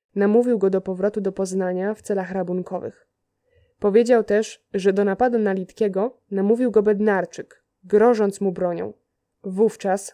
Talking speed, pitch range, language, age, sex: 135 wpm, 190-225 Hz, Polish, 20-39, female